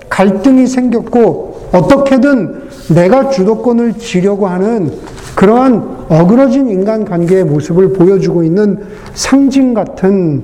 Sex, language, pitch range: male, Korean, 155-230 Hz